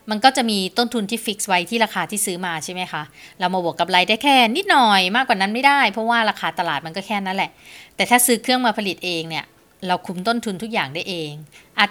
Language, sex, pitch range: Thai, female, 180-230 Hz